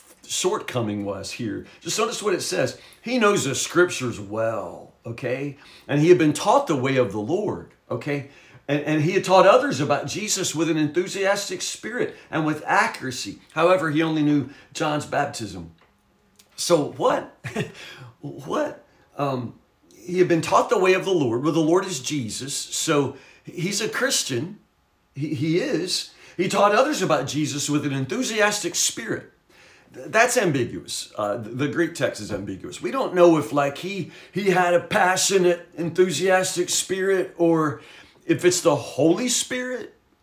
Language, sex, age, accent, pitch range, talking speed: English, male, 50-69, American, 145-185 Hz, 160 wpm